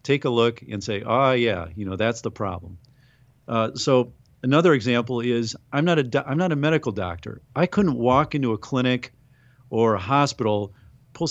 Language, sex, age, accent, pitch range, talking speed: English, male, 40-59, American, 110-135 Hz, 175 wpm